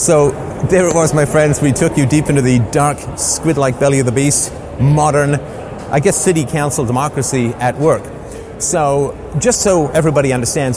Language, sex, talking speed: English, male, 175 wpm